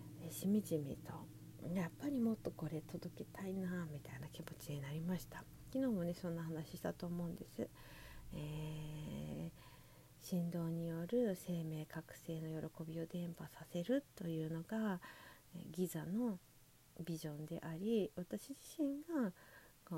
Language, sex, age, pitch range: Japanese, female, 40-59, 155-225 Hz